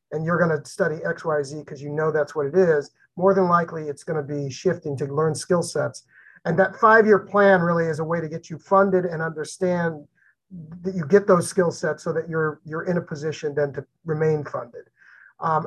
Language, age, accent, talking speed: English, 30-49, American, 225 wpm